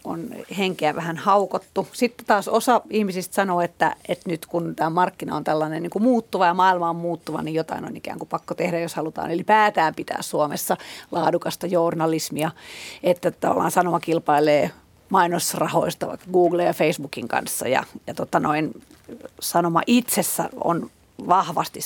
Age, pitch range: 30-49, 170-215 Hz